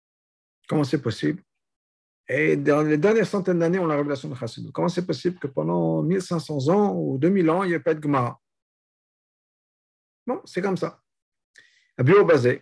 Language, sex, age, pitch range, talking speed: French, male, 50-69, 125-180 Hz, 170 wpm